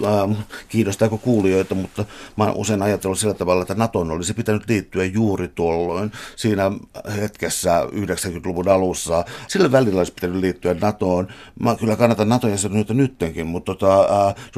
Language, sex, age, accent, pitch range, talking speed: Finnish, male, 60-79, native, 95-120 Hz, 135 wpm